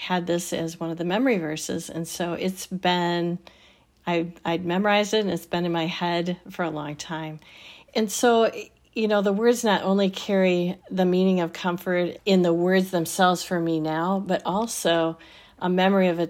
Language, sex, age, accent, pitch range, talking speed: English, female, 40-59, American, 170-200 Hz, 190 wpm